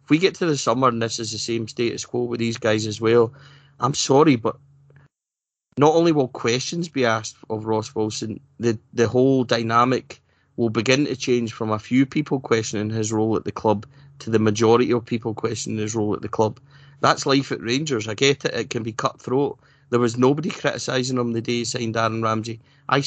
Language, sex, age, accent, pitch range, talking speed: English, male, 20-39, British, 115-135 Hz, 215 wpm